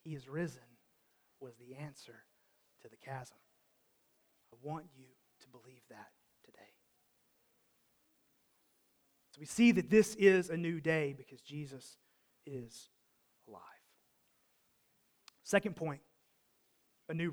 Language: English